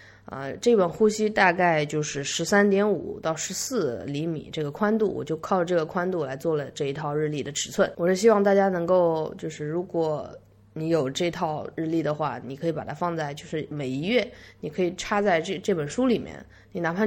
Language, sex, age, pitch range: Chinese, female, 20-39, 150-195 Hz